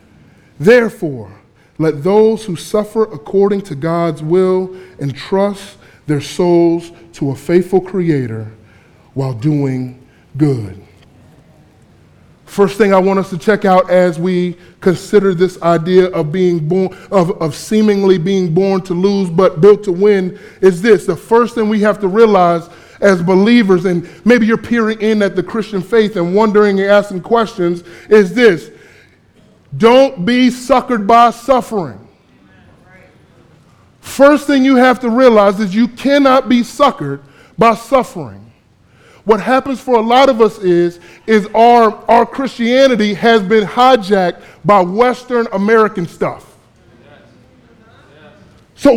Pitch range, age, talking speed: 175-230 Hz, 20-39, 135 wpm